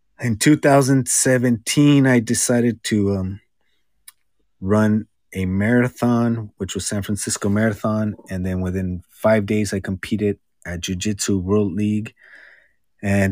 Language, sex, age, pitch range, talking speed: English, male, 30-49, 95-120 Hz, 115 wpm